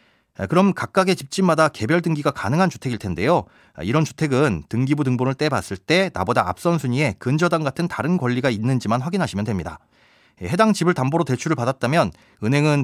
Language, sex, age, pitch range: Korean, male, 30-49, 115-170 Hz